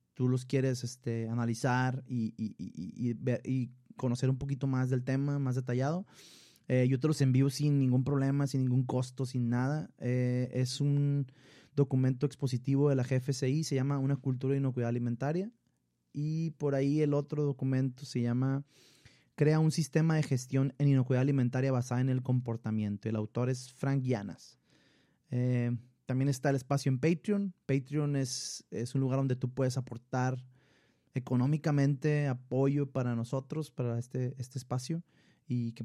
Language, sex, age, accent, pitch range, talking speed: Spanish, male, 30-49, Mexican, 125-140 Hz, 165 wpm